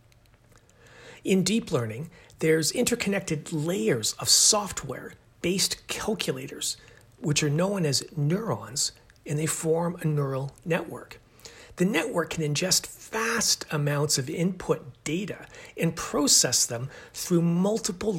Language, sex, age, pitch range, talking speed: English, male, 40-59, 125-180 Hz, 110 wpm